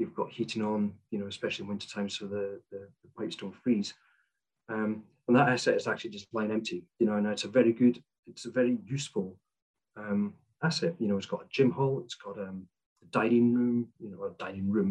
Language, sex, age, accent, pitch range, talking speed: English, male, 30-49, British, 110-135 Hz, 230 wpm